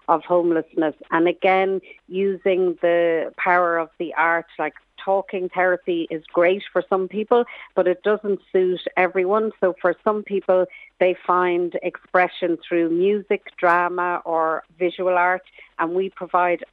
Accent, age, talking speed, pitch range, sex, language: Irish, 50-69, 140 wpm, 165-185 Hz, female, English